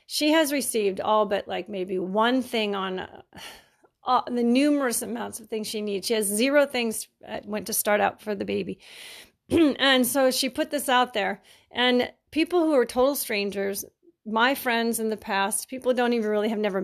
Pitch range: 205-250 Hz